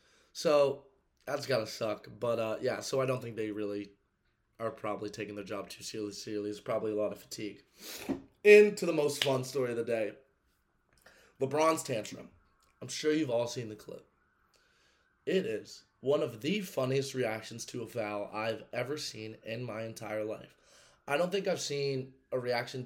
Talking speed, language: 180 wpm, English